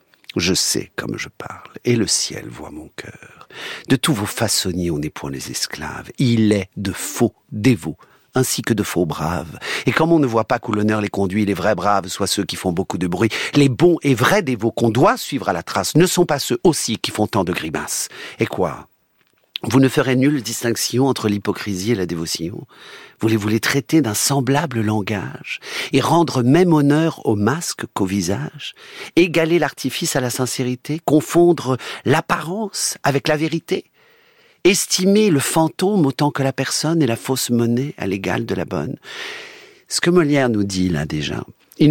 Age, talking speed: 50-69, 190 wpm